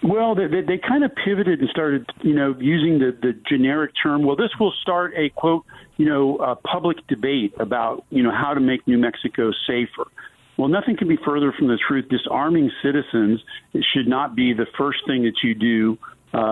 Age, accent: 50-69, American